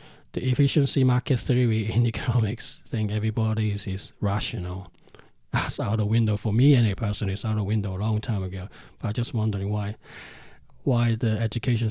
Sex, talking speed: male, 180 wpm